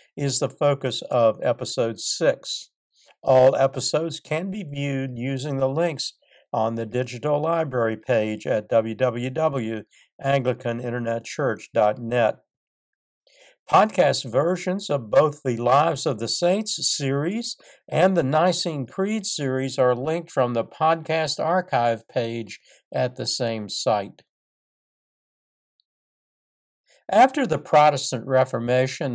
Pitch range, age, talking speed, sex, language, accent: 125-170 Hz, 60-79, 105 wpm, male, English, American